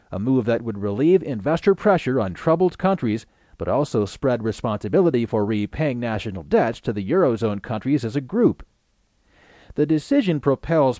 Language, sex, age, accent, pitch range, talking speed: English, male, 40-59, American, 110-145 Hz, 155 wpm